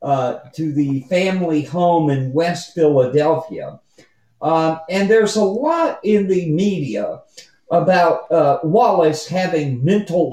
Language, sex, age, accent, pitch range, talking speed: English, male, 50-69, American, 155-220 Hz, 120 wpm